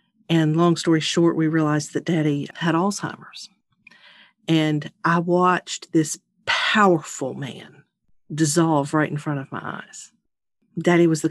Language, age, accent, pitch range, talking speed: English, 50-69, American, 155-180 Hz, 140 wpm